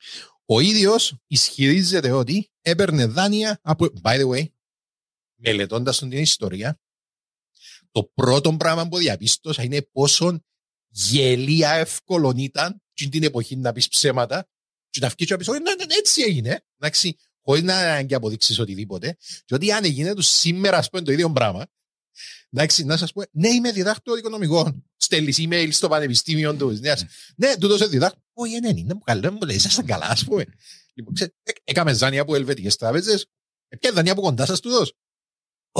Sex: male